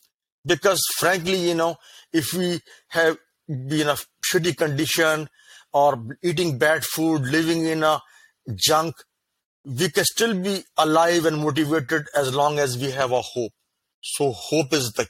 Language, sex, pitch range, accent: Chinese, male, 140-170 Hz, Indian